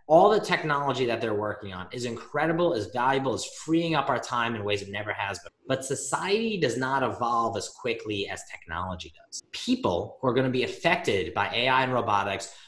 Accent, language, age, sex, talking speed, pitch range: American, English, 20-39, male, 200 wpm, 115-170 Hz